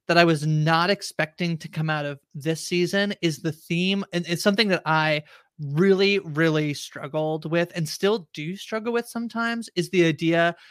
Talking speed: 180 wpm